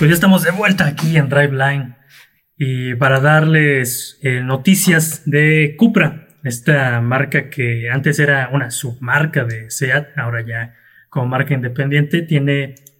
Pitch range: 120-155 Hz